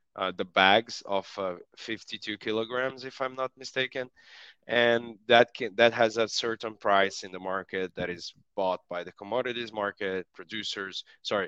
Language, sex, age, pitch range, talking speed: English, male, 20-39, 100-120 Hz, 160 wpm